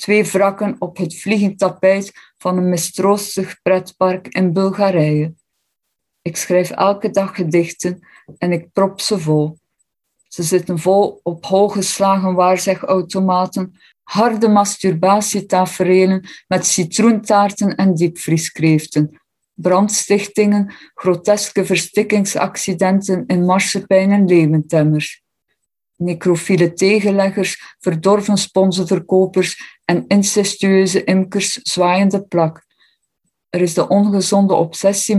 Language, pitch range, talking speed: Dutch, 175-200 Hz, 95 wpm